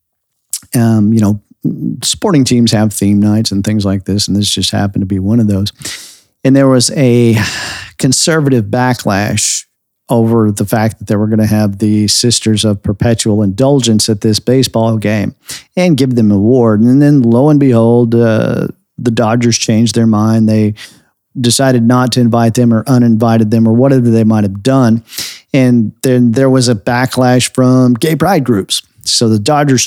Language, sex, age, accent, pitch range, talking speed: English, male, 50-69, American, 105-125 Hz, 180 wpm